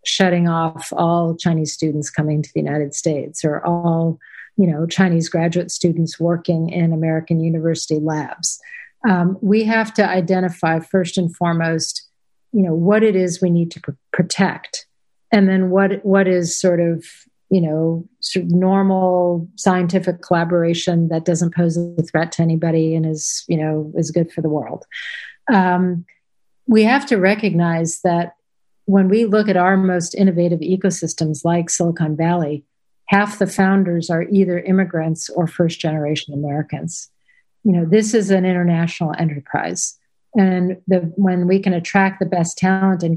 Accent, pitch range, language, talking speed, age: American, 165-195 Hz, English, 155 wpm, 40-59